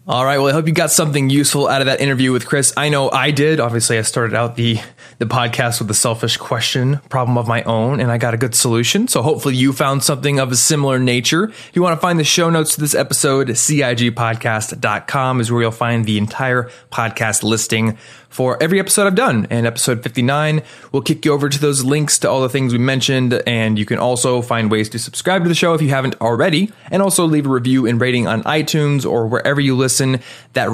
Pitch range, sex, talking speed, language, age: 120-150 Hz, male, 230 wpm, English, 20-39